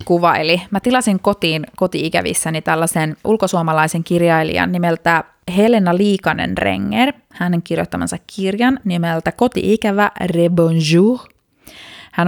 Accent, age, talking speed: native, 20-39, 90 wpm